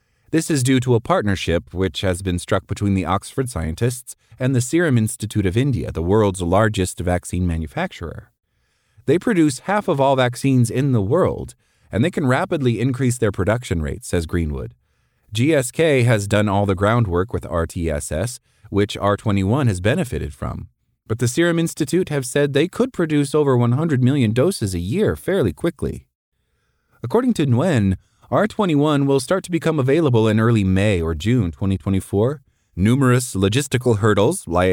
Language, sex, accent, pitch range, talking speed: English, male, American, 95-130 Hz, 160 wpm